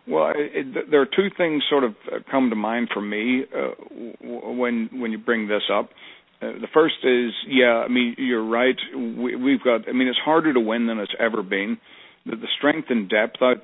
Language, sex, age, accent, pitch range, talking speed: English, male, 60-79, American, 115-130 Hz, 210 wpm